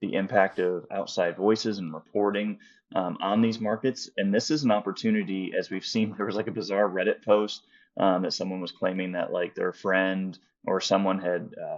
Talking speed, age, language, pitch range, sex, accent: 195 wpm, 20-39, English, 95-110 Hz, male, American